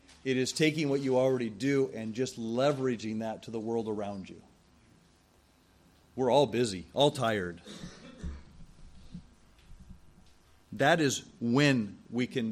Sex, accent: male, American